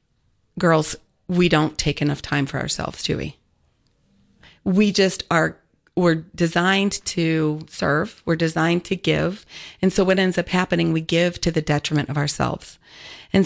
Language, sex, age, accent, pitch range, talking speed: English, female, 40-59, American, 160-190 Hz, 155 wpm